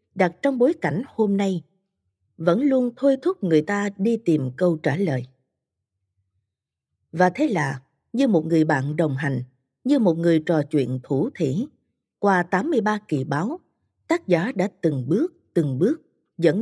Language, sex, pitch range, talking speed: Vietnamese, female, 150-230 Hz, 165 wpm